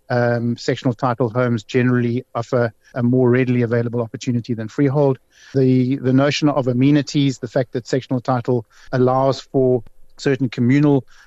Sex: male